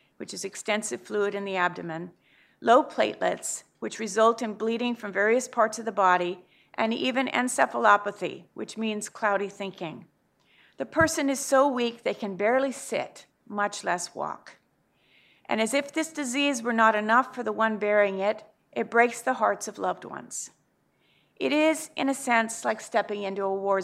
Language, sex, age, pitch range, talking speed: English, female, 50-69, 200-260 Hz, 170 wpm